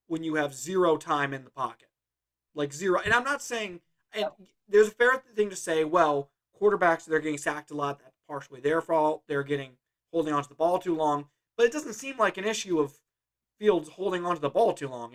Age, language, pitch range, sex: 30-49, English, 145-170 Hz, male